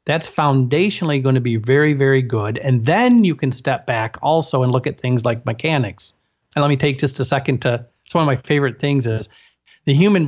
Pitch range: 130-170 Hz